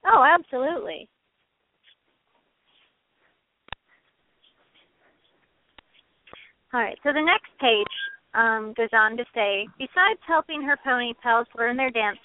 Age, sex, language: 40-59, female, English